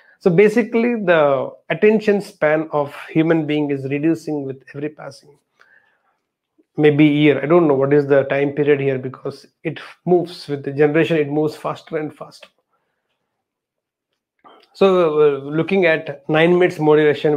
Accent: Indian